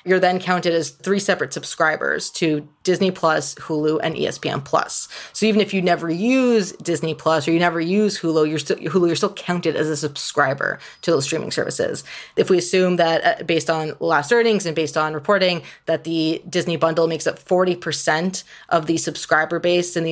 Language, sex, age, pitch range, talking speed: English, female, 30-49, 160-190 Hz, 190 wpm